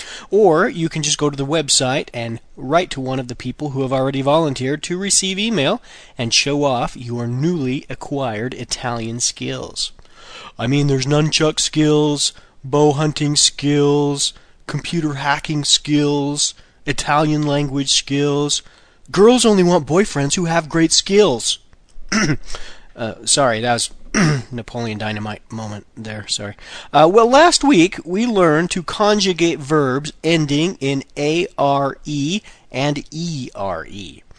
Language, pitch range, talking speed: Italian, 125-165 Hz, 130 wpm